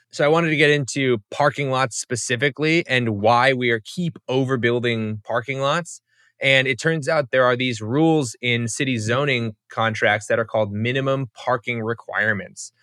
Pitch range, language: 115-140 Hz, English